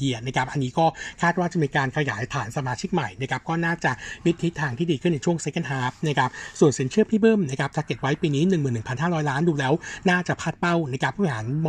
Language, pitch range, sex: Thai, 135-170 Hz, male